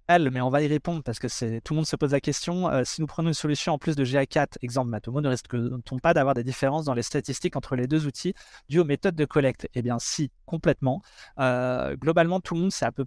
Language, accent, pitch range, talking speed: French, French, 125-155 Hz, 265 wpm